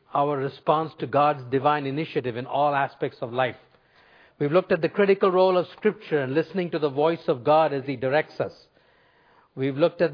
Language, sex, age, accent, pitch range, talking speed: English, male, 50-69, Indian, 140-185 Hz, 195 wpm